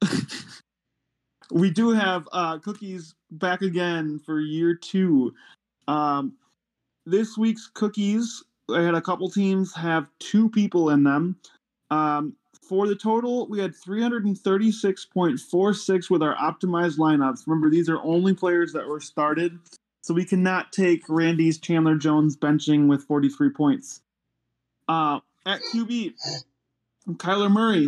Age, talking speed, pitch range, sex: 20-39, 125 wpm, 160-195 Hz, male